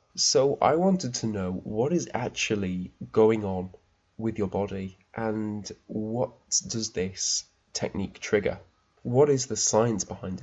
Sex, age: male, 20-39